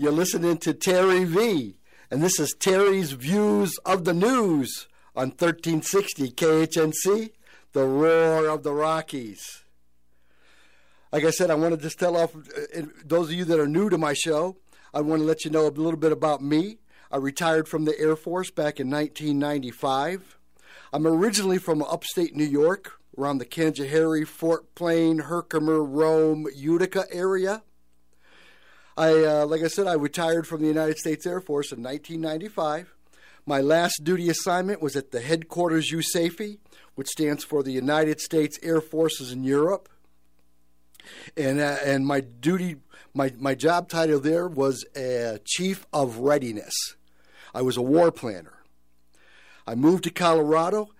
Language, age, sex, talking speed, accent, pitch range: English, 50-69, male, 155 wpm, American, 140-170 Hz